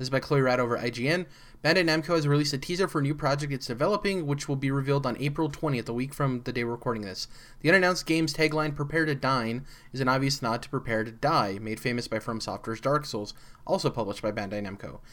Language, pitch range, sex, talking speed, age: English, 115-150 Hz, male, 240 wpm, 20-39